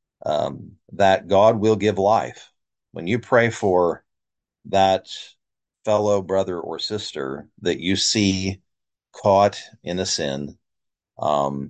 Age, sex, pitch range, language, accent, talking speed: 40-59, male, 90-105 Hz, English, American, 120 wpm